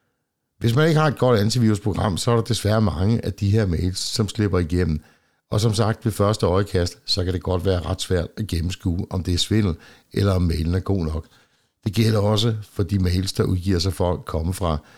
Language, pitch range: Danish, 90-115 Hz